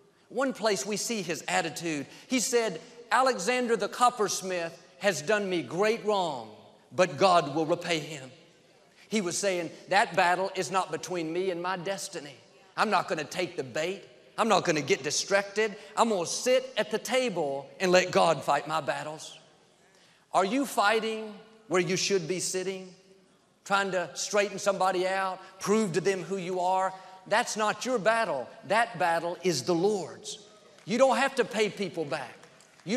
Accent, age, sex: American, 50-69, male